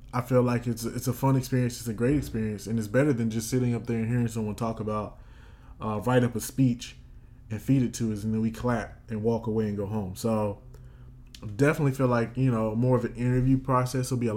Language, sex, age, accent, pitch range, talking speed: English, male, 20-39, American, 105-125 Hz, 250 wpm